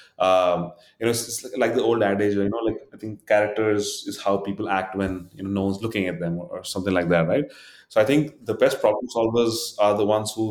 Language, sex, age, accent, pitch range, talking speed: English, male, 30-49, Indian, 100-120 Hz, 240 wpm